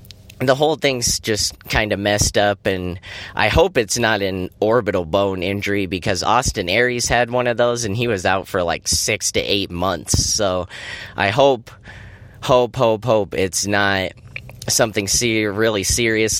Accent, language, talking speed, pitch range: American, English, 165 wpm, 95-110 Hz